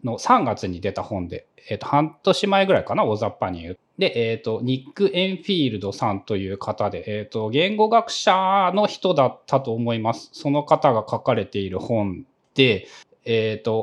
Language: Japanese